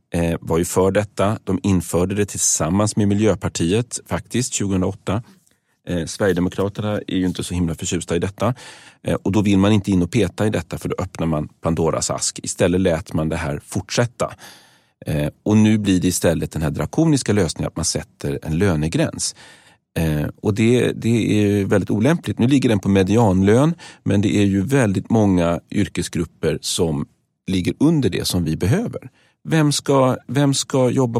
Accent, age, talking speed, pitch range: native, 40-59, 175 wpm, 90-115 Hz